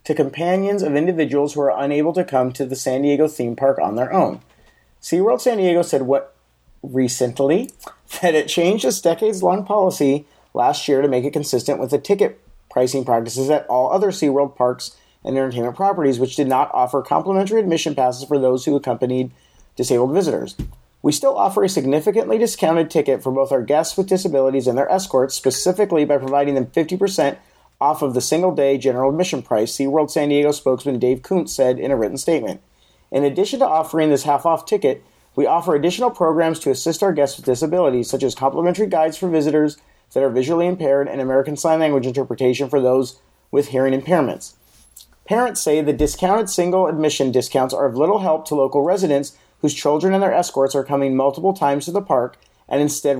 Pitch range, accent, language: 135-170 Hz, American, English